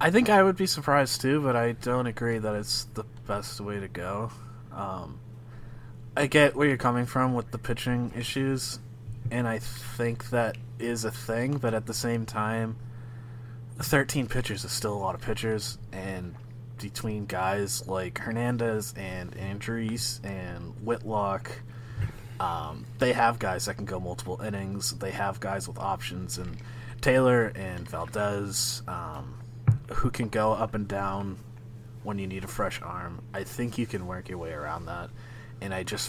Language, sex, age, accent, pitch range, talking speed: English, male, 20-39, American, 105-120 Hz, 170 wpm